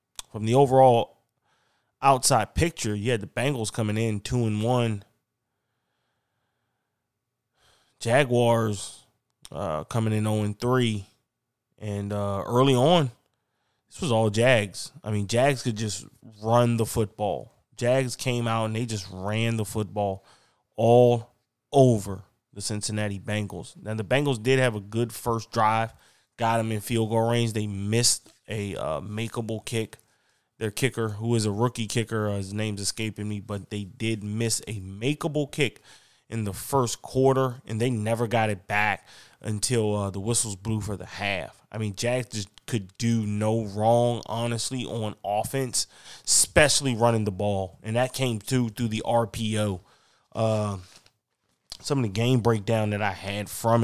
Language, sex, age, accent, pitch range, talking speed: English, male, 20-39, American, 105-120 Hz, 155 wpm